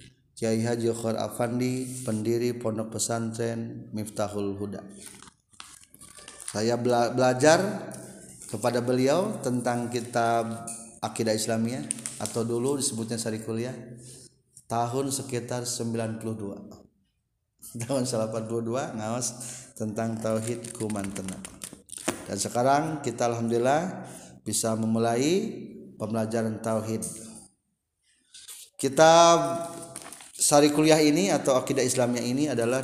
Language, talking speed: Indonesian, 80 wpm